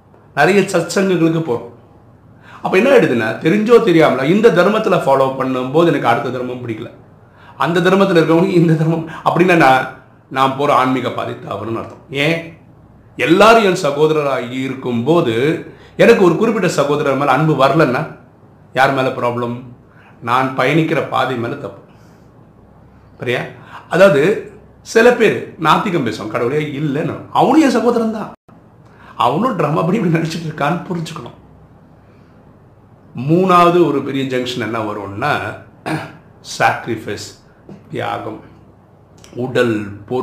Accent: native